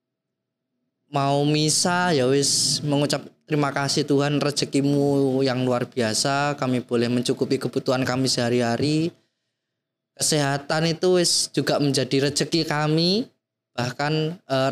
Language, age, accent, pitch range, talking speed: Indonesian, 20-39, native, 135-175 Hz, 110 wpm